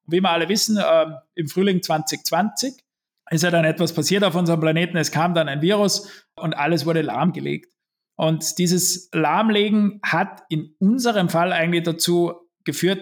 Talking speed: 160 wpm